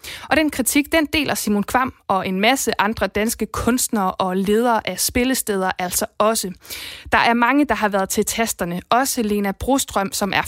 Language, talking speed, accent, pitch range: Danish, 185 wpm, native, 195-240 Hz